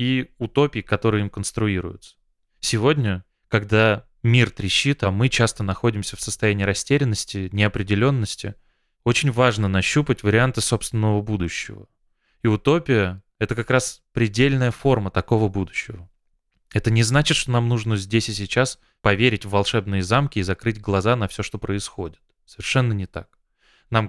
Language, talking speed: Russian, 140 wpm